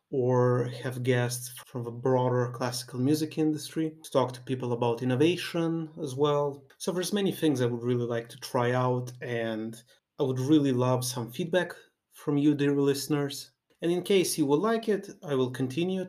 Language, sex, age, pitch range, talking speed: English, male, 30-49, 120-155 Hz, 185 wpm